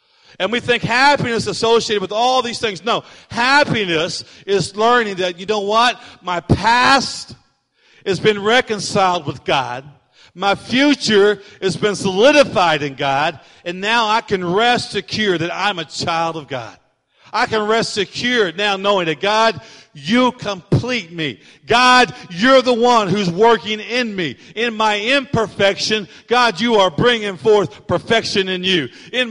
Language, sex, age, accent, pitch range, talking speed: English, male, 50-69, American, 190-245 Hz, 155 wpm